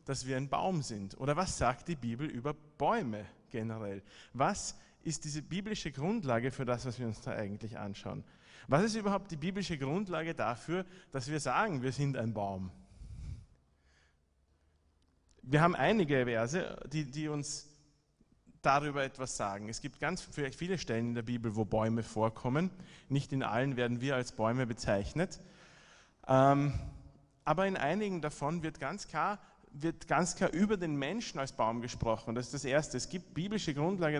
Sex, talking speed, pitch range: male, 165 wpm, 120-165 Hz